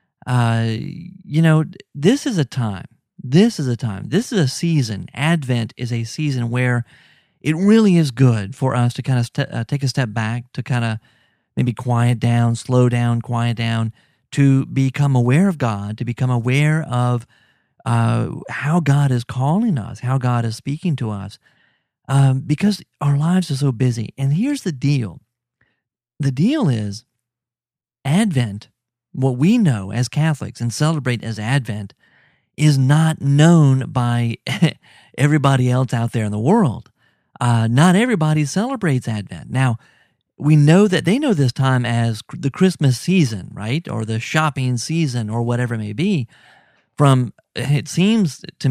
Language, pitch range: English, 120-155 Hz